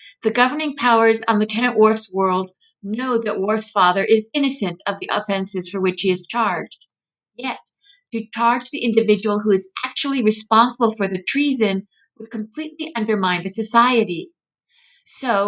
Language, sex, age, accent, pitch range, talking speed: English, female, 50-69, American, 200-245 Hz, 150 wpm